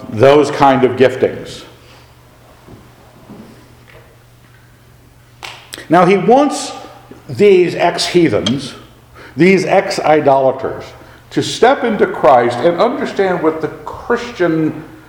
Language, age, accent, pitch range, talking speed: English, 50-69, American, 115-170 Hz, 85 wpm